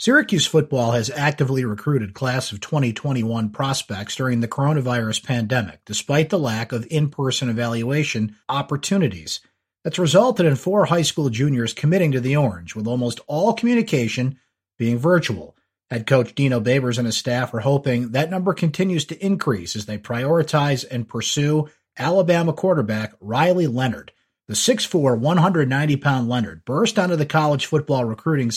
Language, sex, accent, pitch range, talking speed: English, male, American, 120-160 Hz, 145 wpm